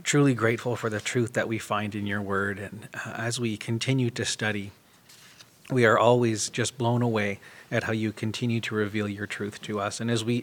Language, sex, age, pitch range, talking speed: English, male, 40-59, 105-120 Hz, 205 wpm